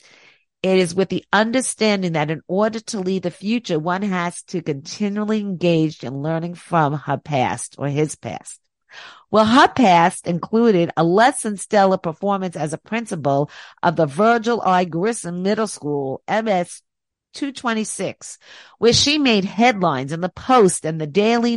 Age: 50-69